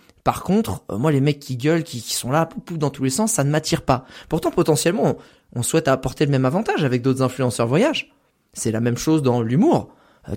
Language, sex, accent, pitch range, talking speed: French, male, French, 125-170 Hz, 245 wpm